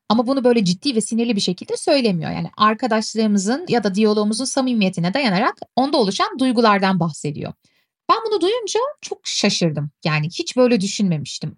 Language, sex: Turkish, female